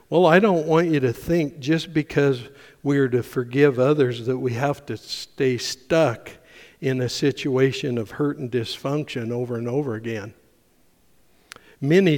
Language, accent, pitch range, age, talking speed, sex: English, American, 125-145 Hz, 60-79, 155 wpm, male